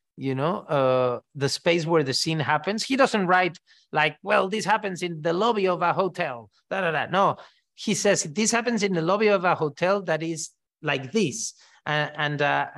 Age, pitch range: 30-49, 155-200 Hz